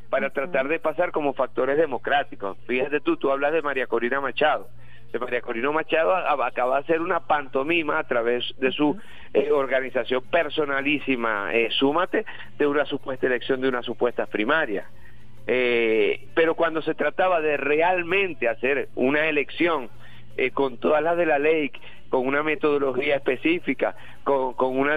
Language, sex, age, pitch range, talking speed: Spanish, male, 50-69, 130-175 Hz, 155 wpm